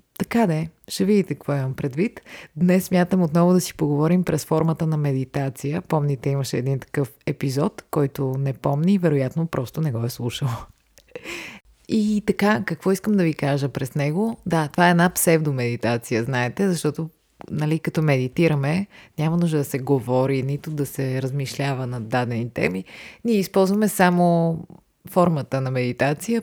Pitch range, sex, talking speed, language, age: 135-180 Hz, female, 155 wpm, Bulgarian, 30-49